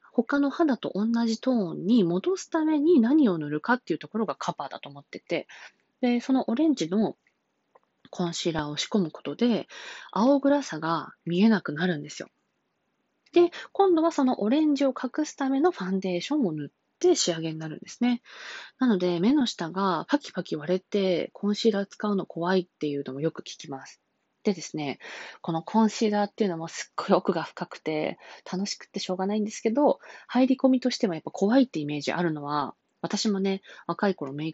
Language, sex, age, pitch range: Japanese, female, 20-39, 160-245 Hz